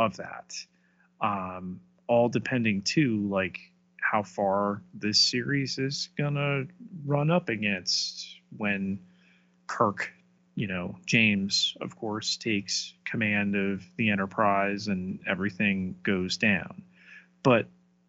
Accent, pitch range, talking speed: American, 95-125 Hz, 110 wpm